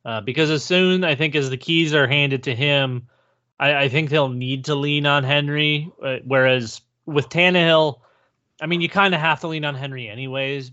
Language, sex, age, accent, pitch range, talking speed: English, male, 30-49, American, 135-165 Hz, 205 wpm